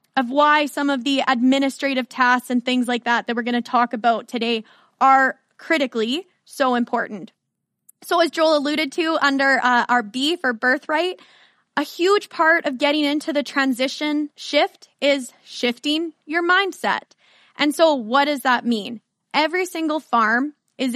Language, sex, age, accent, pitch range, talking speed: English, female, 10-29, American, 245-300 Hz, 160 wpm